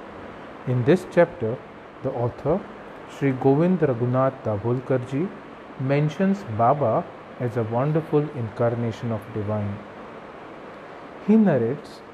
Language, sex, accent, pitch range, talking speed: English, male, Indian, 120-145 Hz, 95 wpm